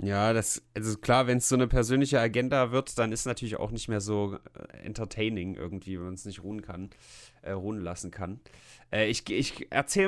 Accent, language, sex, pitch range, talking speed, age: German, German, male, 110-140 Hz, 210 wpm, 30-49